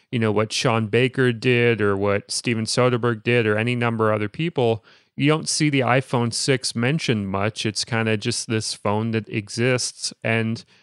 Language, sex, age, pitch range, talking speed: English, male, 30-49, 110-130 Hz, 190 wpm